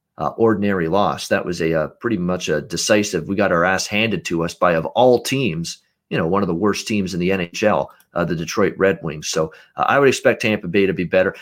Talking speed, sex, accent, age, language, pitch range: 245 wpm, male, American, 40-59, English, 95-115 Hz